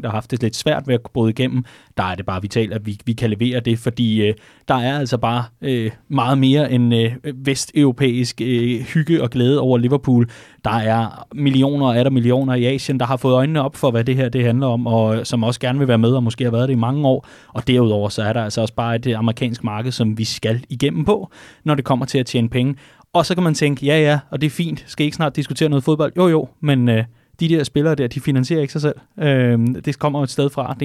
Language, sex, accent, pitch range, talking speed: Danish, male, native, 120-140 Hz, 265 wpm